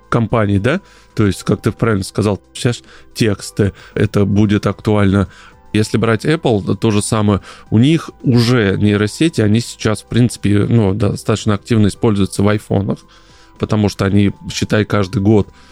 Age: 20-39